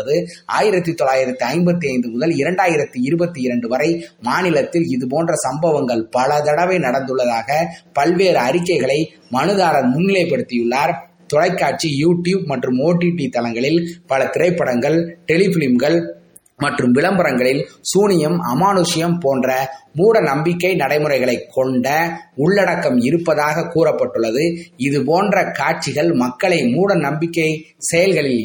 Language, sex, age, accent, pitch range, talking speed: Tamil, male, 20-39, native, 130-175 Hz, 85 wpm